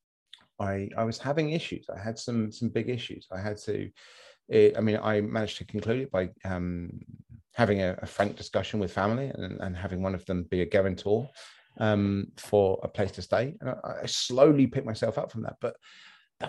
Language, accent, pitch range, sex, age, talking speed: English, British, 105-140 Hz, male, 30-49, 210 wpm